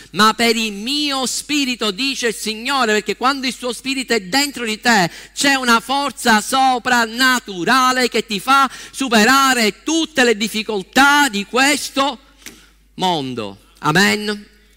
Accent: native